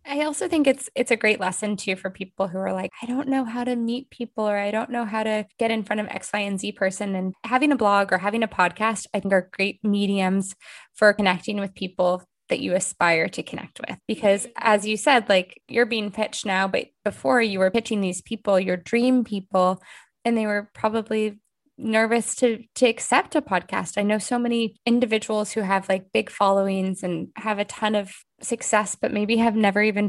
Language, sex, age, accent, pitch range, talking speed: English, female, 20-39, American, 190-225 Hz, 215 wpm